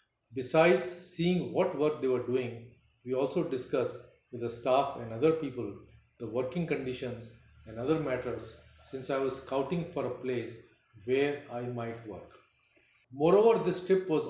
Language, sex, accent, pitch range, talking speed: English, male, Indian, 120-150 Hz, 155 wpm